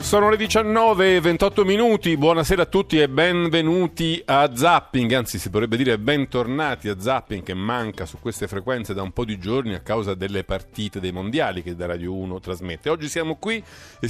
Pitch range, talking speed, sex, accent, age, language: 110-155 Hz, 185 wpm, male, native, 40-59, Italian